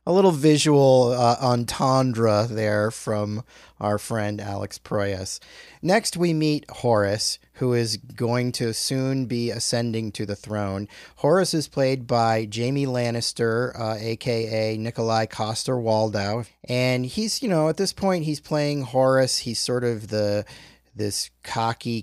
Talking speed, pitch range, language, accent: 140 wpm, 105-130 Hz, English, American